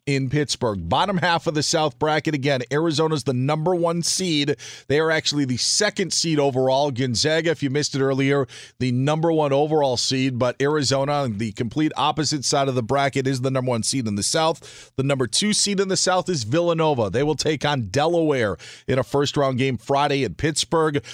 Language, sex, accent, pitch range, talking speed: English, male, American, 135-165 Hz, 200 wpm